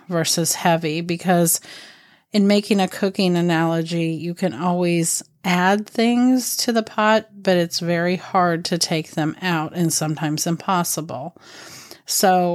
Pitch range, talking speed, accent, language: 165-190 Hz, 135 wpm, American, English